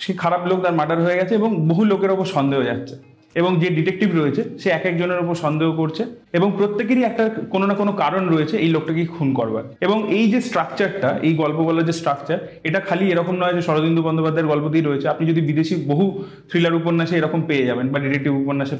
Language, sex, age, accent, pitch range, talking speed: Bengali, male, 30-49, native, 155-195 Hz, 205 wpm